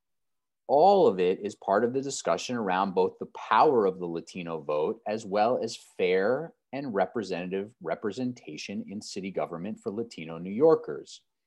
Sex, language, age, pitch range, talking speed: male, English, 30-49, 95-135 Hz, 155 wpm